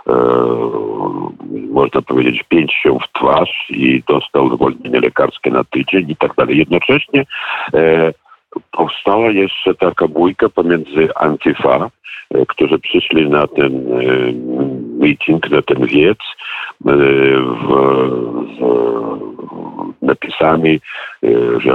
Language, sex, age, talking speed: Polish, male, 60-79, 90 wpm